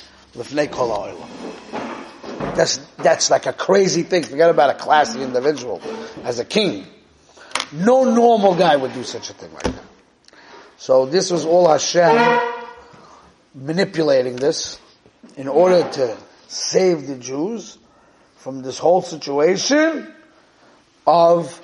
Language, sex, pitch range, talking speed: English, male, 145-210 Hz, 115 wpm